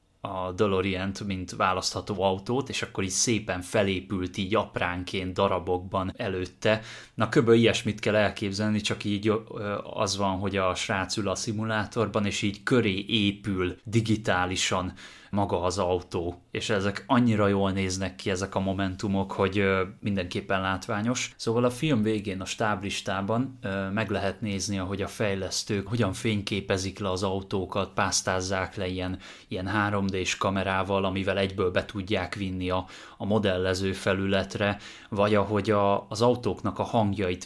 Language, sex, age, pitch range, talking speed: Hungarian, male, 20-39, 95-110 Hz, 145 wpm